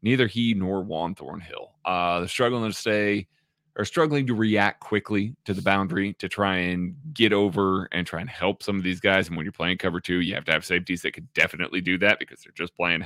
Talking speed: 235 wpm